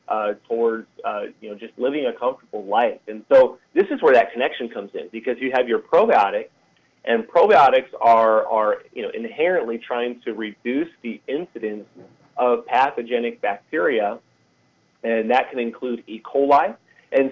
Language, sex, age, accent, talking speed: English, male, 30-49, American, 160 wpm